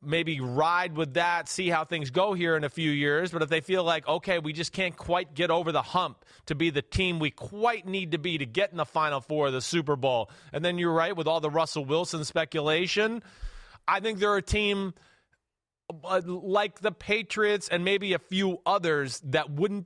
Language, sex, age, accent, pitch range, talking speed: English, male, 30-49, American, 145-200 Hz, 215 wpm